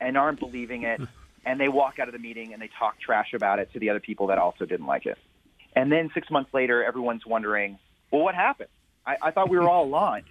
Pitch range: 115-150 Hz